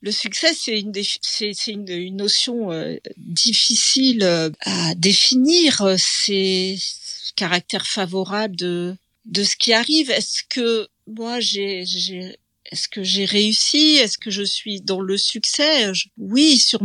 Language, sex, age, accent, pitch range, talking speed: French, female, 50-69, French, 190-230 Hz, 155 wpm